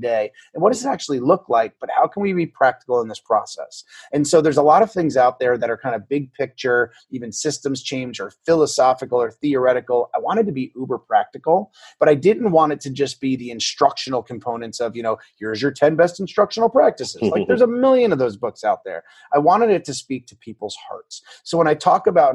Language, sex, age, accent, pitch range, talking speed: English, male, 30-49, American, 125-170 Hz, 235 wpm